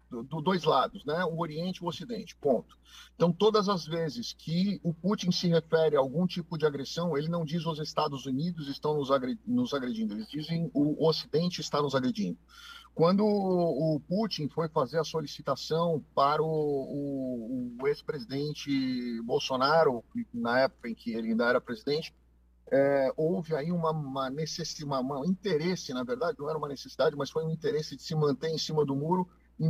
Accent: Brazilian